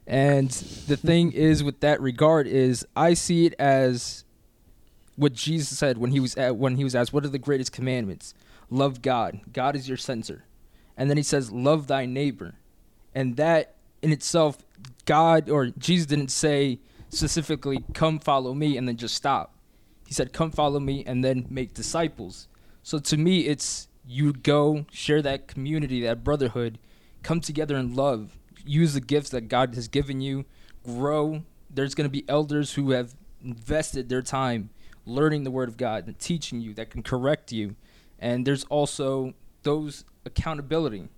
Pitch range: 125-150 Hz